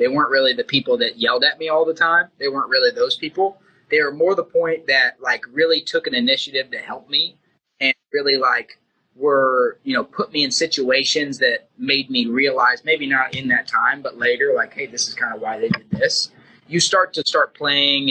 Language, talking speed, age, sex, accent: English, 220 wpm, 20-39, male, American